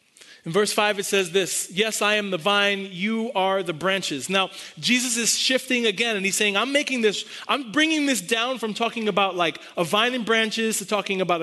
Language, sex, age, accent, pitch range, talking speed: English, male, 30-49, American, 195-245 Hz, 215 wpm